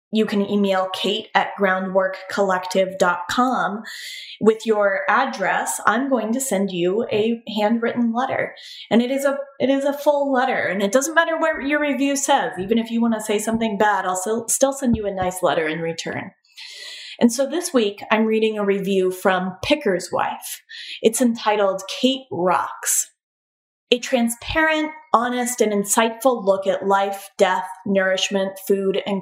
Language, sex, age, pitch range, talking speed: English, female, 20-39, 190-250 Hz, 155 wpm